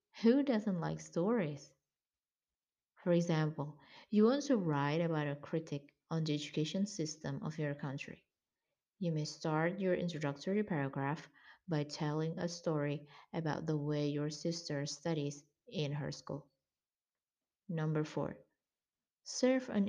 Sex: female